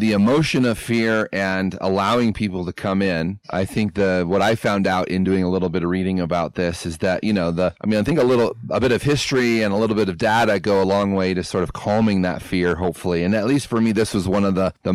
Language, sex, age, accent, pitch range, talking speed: English, male, 30-49, American, 95-115 Hz, 275 wpm